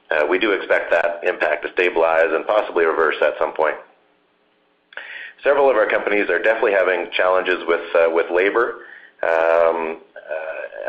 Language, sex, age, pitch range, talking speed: English, male, 40-59, 75-95 Hz, 155 wpm